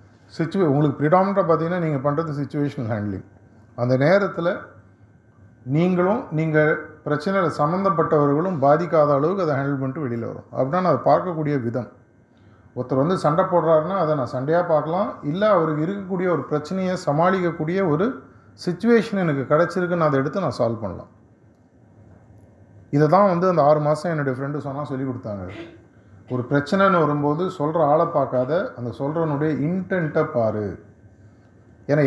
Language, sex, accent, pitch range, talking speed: Tamil, male, native, 120-160 Hz, 135 wpm